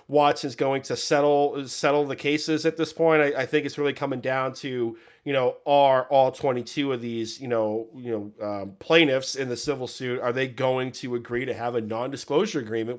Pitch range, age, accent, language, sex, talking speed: 115-150 Hz, 30-49, American, English, male, 210 wpm